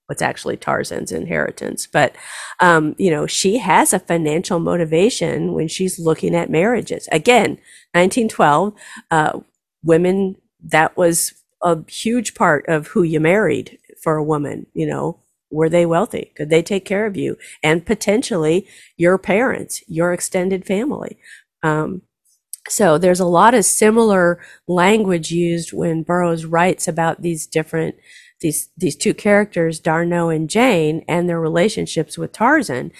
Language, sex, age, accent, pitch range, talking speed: English, female, 40-59, American, 165-195 Hz, 145 wpm